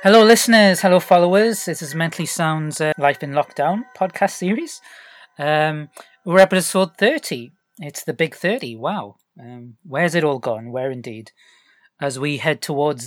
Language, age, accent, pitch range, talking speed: English, 30-49, British, 130-165 Hz, 155 wpm